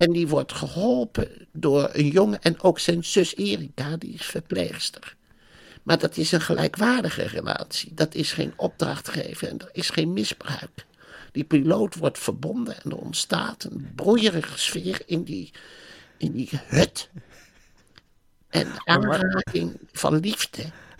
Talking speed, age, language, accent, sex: 145 wpm, 60-79, Dutch, Dutch, male